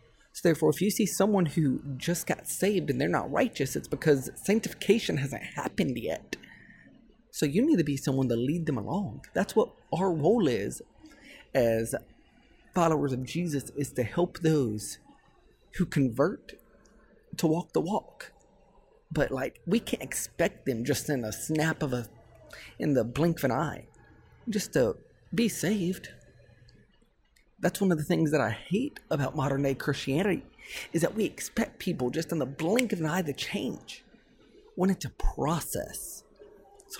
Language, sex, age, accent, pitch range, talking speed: English, male, 30-49, American, 130-175 Hz, 165 wpm